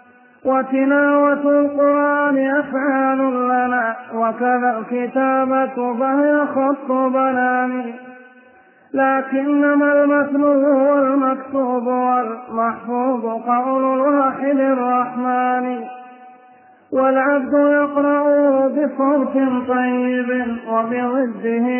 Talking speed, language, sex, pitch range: 60 wpm, Arabic, male, 250-275 Hz